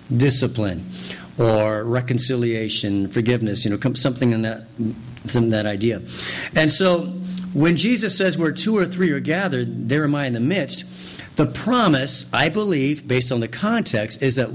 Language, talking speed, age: English, 155 wpm, 50-69